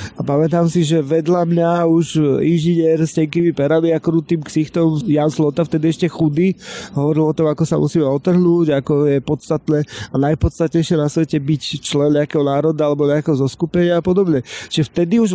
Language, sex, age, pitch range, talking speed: Slovak, male, 30-49, 145-170 Hz, 175 wpm